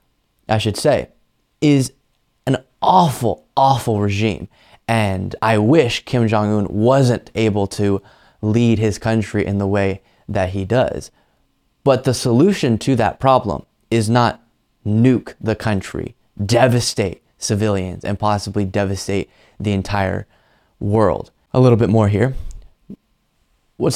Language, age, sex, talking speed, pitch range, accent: English, 20-39, male, 125 wpm, 105-130 Hz, American